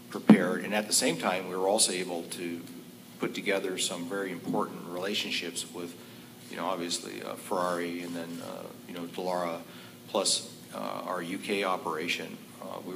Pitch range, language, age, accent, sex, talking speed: 85-90 Hz, English, 50-69, American, male, 165 wpm